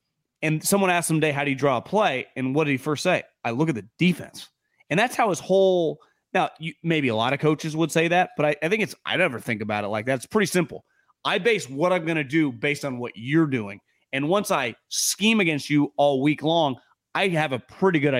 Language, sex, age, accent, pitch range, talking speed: English, male, 30-49, American, 135-195 Hz, 255 wpm